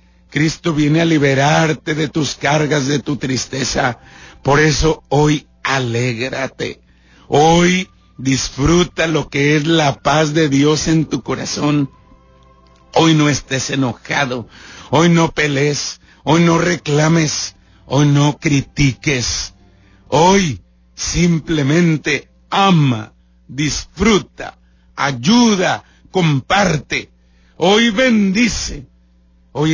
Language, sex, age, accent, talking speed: Spanish, male, 60-79, Mexican, 95 wpm